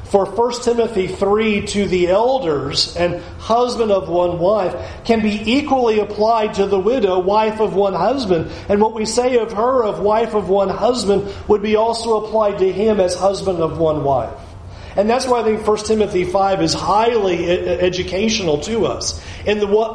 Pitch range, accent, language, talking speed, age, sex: 175-220 Hz, American, English, 180 wpm, 40-59, male